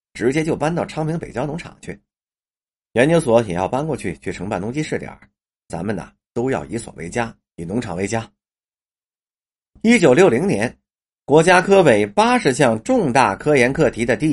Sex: male